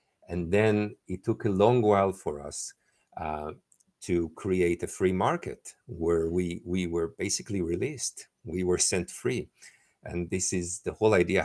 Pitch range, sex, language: 90-115 Hz, male, English